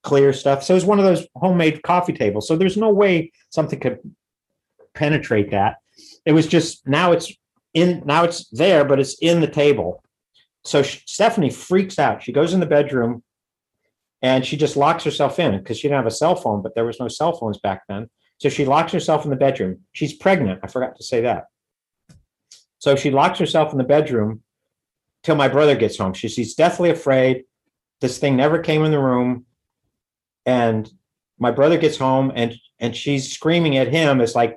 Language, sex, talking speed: English, male, 200 wpm